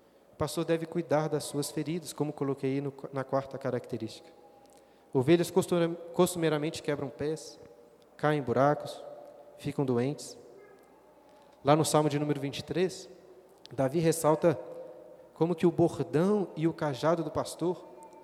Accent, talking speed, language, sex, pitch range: Brazilian, 130 wpm, Portuguese, male, 145-180 Hz